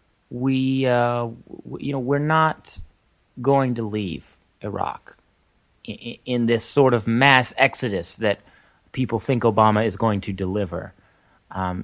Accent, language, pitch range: American, English, 105-135 Hz